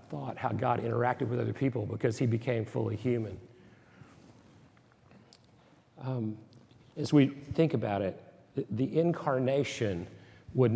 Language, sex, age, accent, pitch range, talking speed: English, male, 50-69, American, 110-135 Hz, 115 wpm